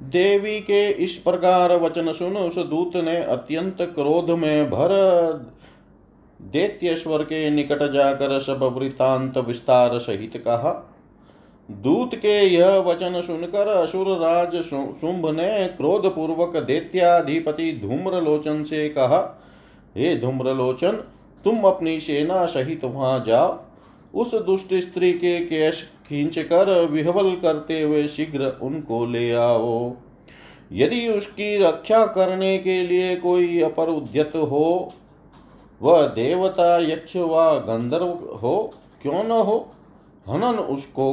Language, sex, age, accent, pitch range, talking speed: Hindi, male, 40-59, native, 135-180 Hz, 115 wpm